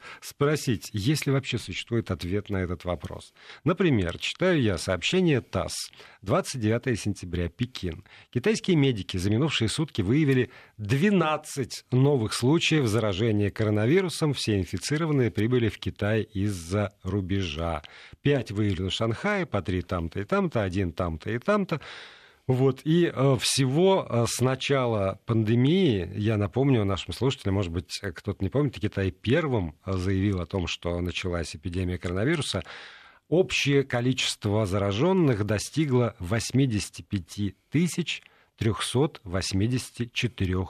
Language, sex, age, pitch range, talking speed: Russian, male, 50-69, 95-135 Hz, 115 wpm